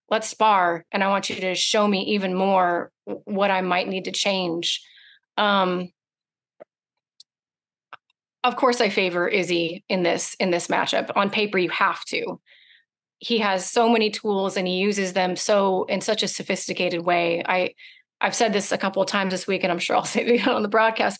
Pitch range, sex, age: 190-220 Hz, female, 30-49